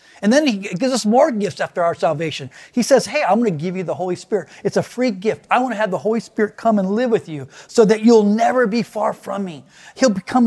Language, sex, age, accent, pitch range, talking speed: English, male, 40-59, American, 155-215 Hz, 270 wpm